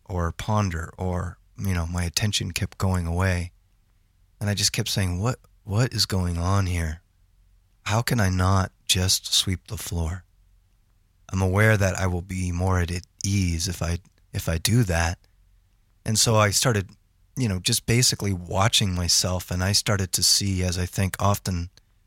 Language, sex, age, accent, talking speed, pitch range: English, male, 30-49, American, 170 wpm, 90-100 Hz